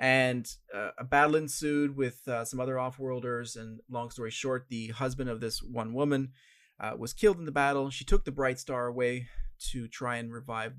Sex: male